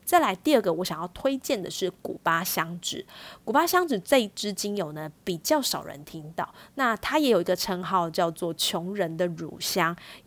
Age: 20-39